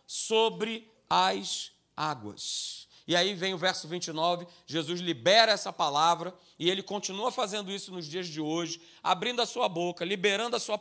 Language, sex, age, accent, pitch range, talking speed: Portuguese, male, 40-59, Brazilian, 165-215 Hz, 160 wpm